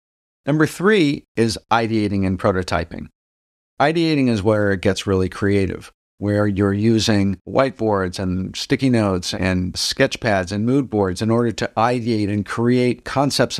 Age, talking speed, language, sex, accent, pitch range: 50-69, 145 wpm, English, male, American, 95-120 Hz